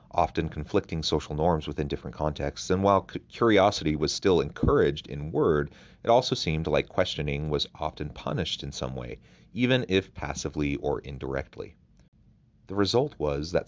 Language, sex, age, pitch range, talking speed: English, male, 30-49, 75-100 Hz, 155 wpm